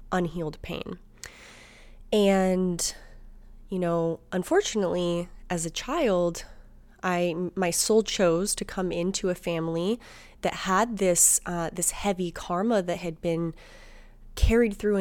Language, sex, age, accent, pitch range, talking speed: English, female, 20-39, American, 165-195 Hz, 120 wpm